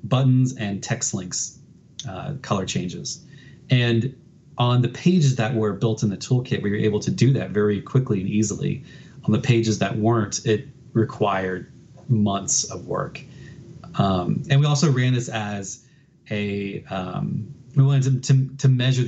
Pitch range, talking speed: 105-140 Hz, 160 wpm